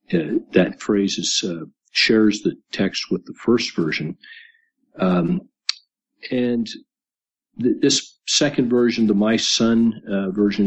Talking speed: 120 wpm